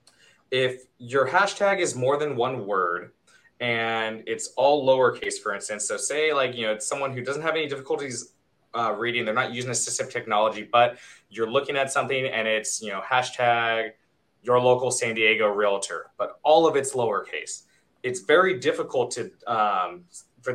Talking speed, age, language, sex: 170 wpm, 20-39, English, male